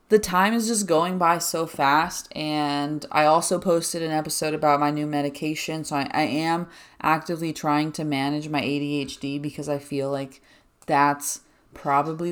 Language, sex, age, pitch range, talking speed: English, female, 20-39, 145-185 Hz, 165 wpm